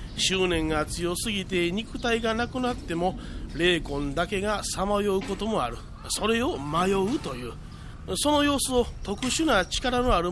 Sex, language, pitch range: male, Japanese, 165-230 Hz